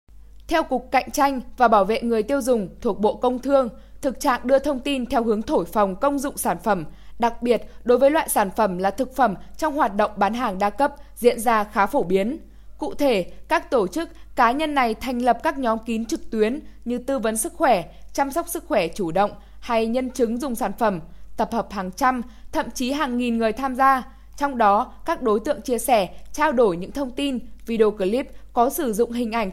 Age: 10-29